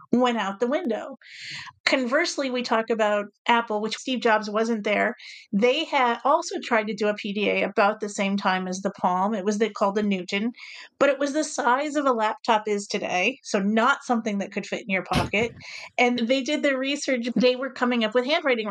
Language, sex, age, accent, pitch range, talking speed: English, female, 40-59, American, 210-260 Hz, 205 wpm